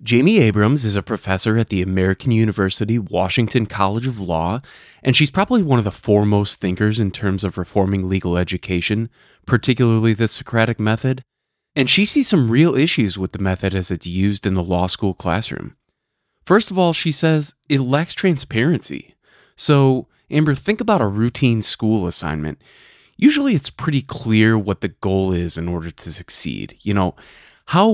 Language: English